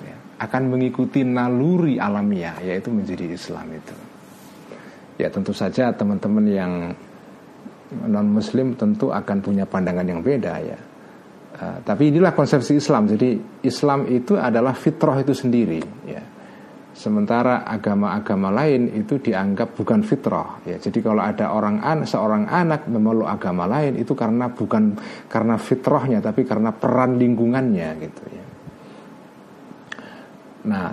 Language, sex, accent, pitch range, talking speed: Indonesian, male, native, 105-145 Hz, 125 wpm